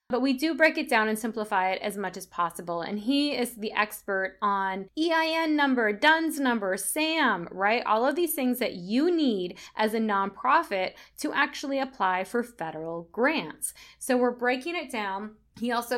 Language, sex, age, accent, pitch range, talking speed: English, female, 20-39, American, 200-285 Hz, 180 wpm